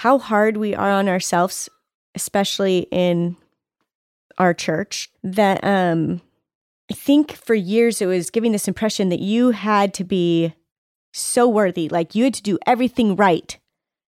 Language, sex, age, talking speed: English, female, 30-49, 150 wpm